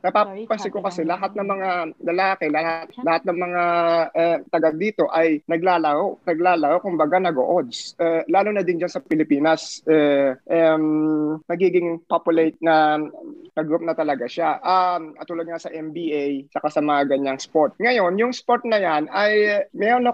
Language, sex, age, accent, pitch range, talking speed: Filipino, male, 20-39, native, 160-205 Hz, 155 wpm